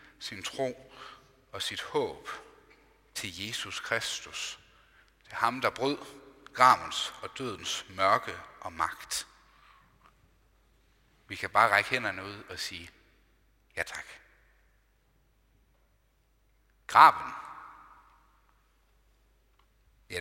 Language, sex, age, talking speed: Danish, male, 60-79, 90 wpm